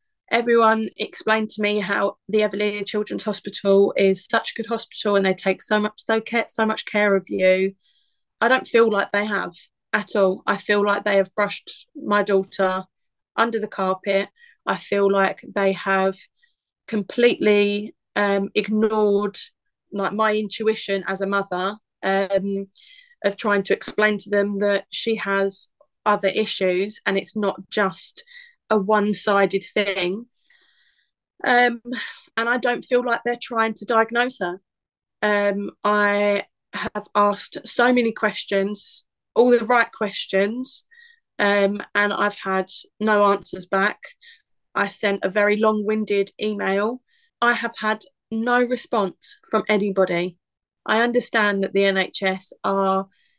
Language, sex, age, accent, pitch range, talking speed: English, female, 20-39, British, 195-225 Hz, 140 wpm